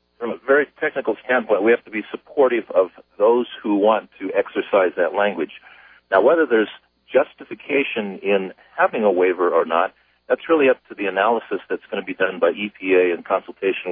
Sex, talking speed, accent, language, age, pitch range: male, 185 wpm, American, English, 50-69, 90-120 Hz